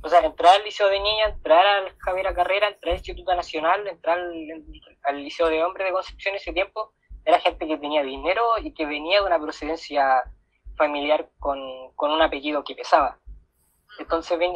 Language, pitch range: Spanish, 155-205 Hz